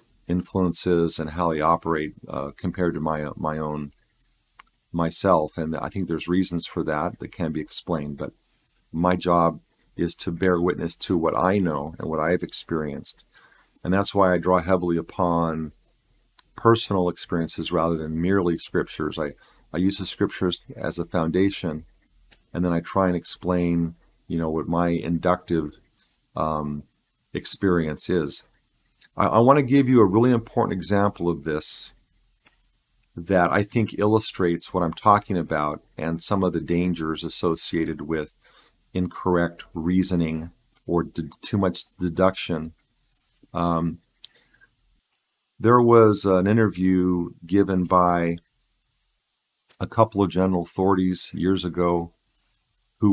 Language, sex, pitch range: English, male, 80-95 Hz